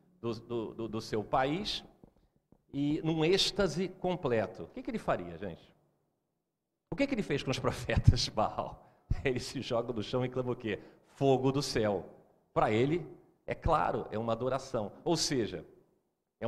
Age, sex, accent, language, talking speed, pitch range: 40-59, male, Brazilian, Portuguese, 170 wpm, 115-165 Hz